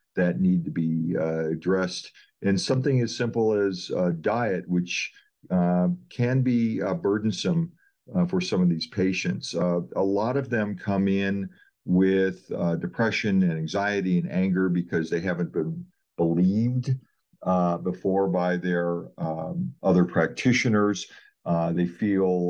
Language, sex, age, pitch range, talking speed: English, male, 50-69, 90-115 Hz, 145 wpm